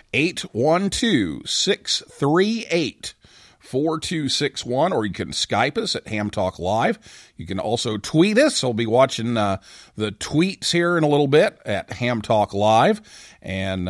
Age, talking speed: 40-59, 145 wpm